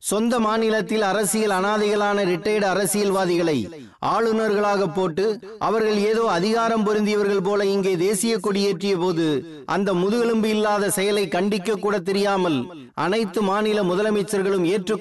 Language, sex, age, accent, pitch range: Tamil, male, 30-49, native, 185-215 Hz